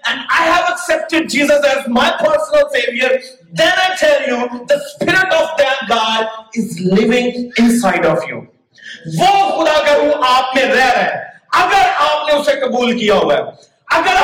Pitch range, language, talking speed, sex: 255-320 Hz, Urdu, 170 wpm, male